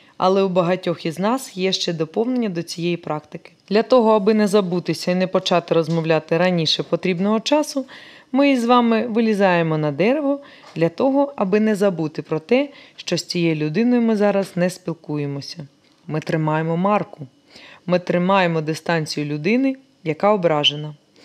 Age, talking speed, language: 20-39, 150 wpm, Ukrainian